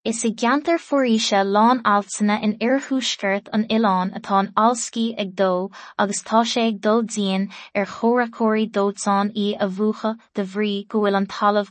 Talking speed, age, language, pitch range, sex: 145 wpm, 20-39, English, 195-225 Hz, female